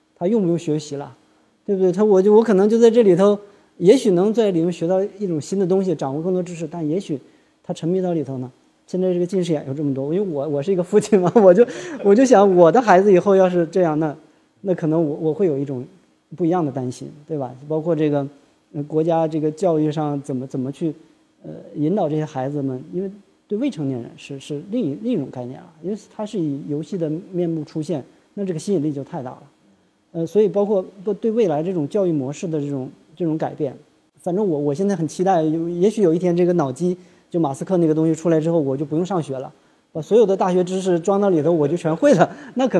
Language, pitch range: Chinese, 145-185 Hz